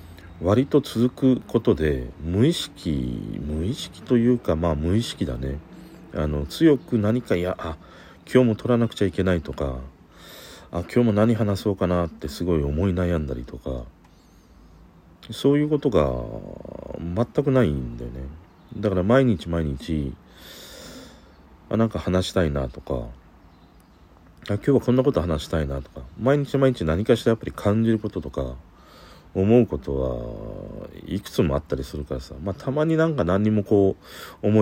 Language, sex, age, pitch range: Japanese, male, 40-59, 75-110 Hz